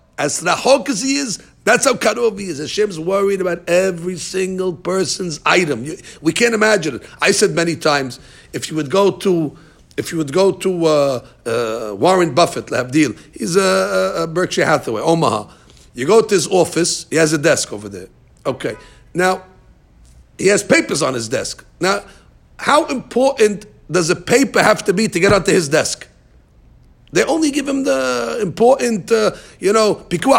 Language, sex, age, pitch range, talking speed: English, male, 50-69, 165-210 Hz, 170 wpm